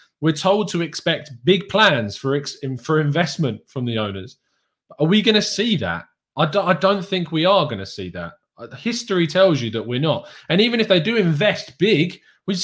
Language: English